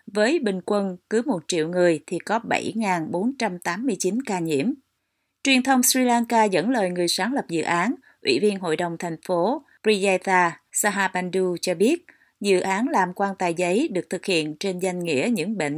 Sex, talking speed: female, 180 wpm